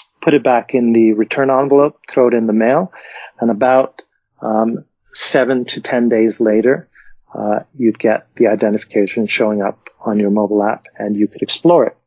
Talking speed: 180 wpm